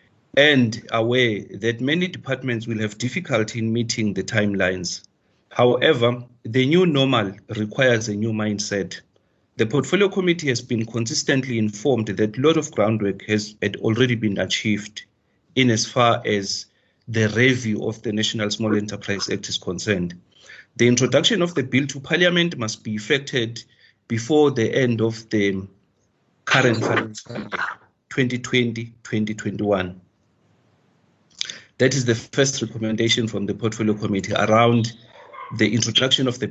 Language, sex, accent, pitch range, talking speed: English, male, South African, 105-130 Hz, 140 wpm